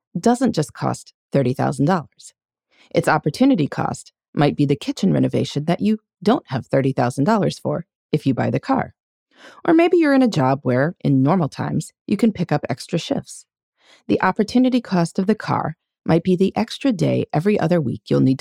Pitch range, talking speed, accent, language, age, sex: 145-230 Hz, 180 wpm, American, English, 30-49, female